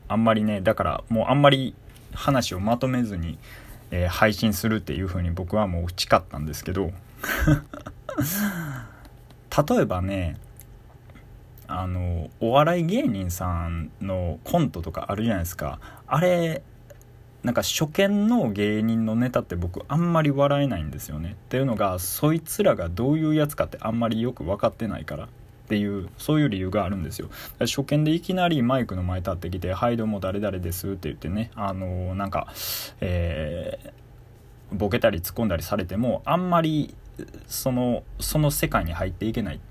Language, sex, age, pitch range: Japanese, male, 20-39, 95-135 Hz